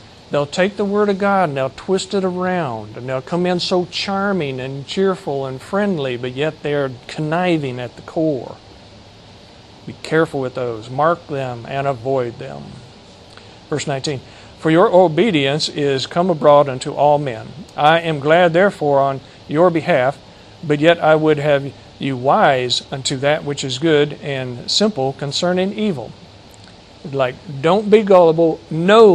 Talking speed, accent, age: 155 wpm, American, 50-69